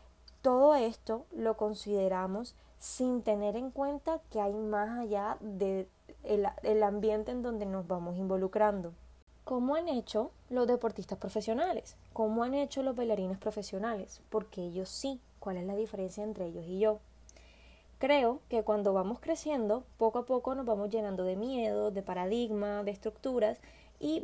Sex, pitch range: female, 200-255 Hz